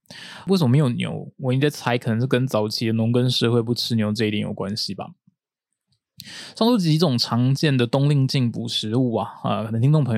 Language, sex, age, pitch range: Chinese, male, 20-39, 115-140 Hz